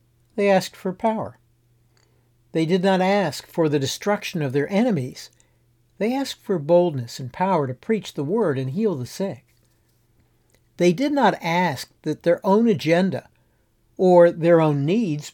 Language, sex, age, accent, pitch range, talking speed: English, male, 60-79, American, 120-180 Hz, 155 wpm